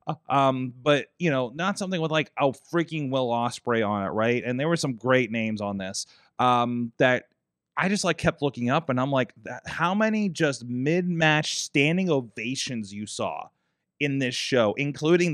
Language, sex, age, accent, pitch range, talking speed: English, male, 30-49, American, 120-155 Hz, 185 wpm